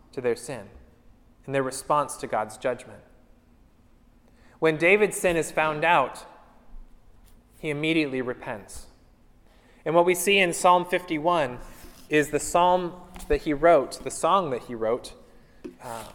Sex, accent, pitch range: male, American, 135-180 Hz